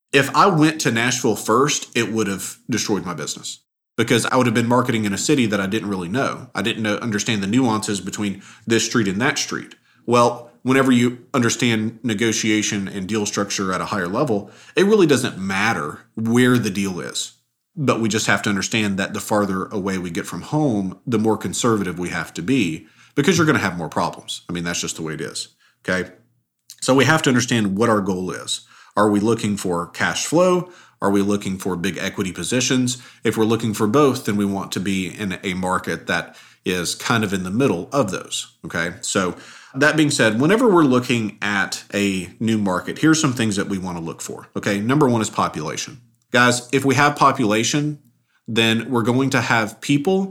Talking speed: 210 wpm